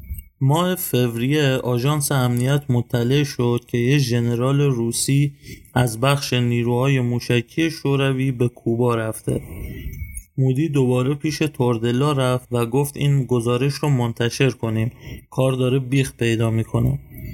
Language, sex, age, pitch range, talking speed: Persian, male, 30-49, 120-140 Hz, 120 wpm